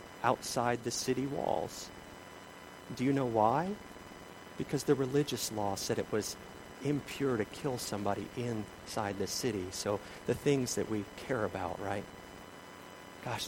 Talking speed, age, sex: 140 wpm, 40-59, male